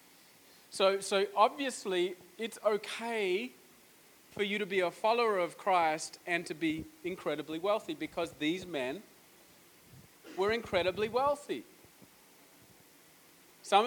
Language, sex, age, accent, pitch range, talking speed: English, male, 30-49, Australian, 205-270 Hz, 110 wpm